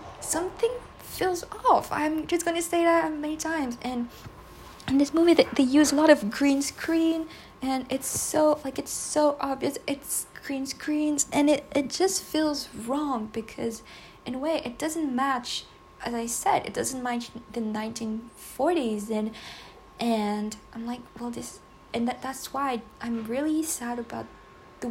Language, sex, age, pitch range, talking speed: English, female, 20-39, 220-285 Hz, 165 wpm